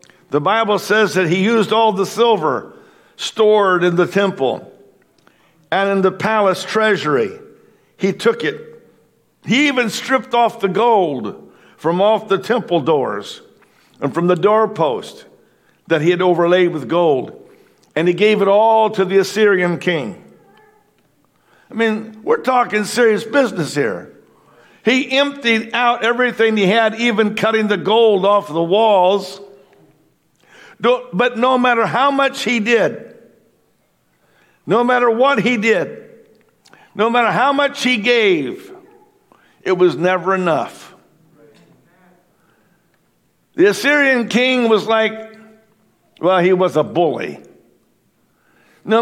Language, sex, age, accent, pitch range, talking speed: English, male, 50-69, American, 190-240 Hz, 125 wpm